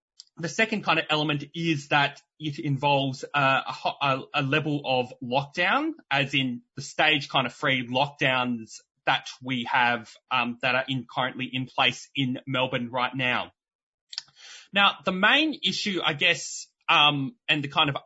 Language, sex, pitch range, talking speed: English, male, 135-165 Hz, 155 wpm